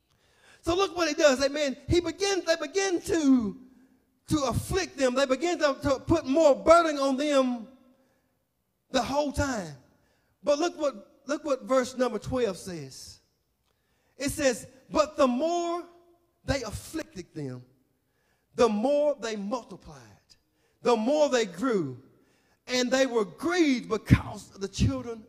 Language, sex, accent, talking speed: English, male, American, 135 wpm